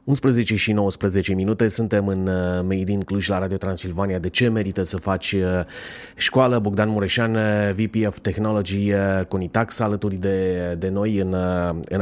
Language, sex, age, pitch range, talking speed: Romanian, male, 30-49, 95-120 Hz, 165 wpm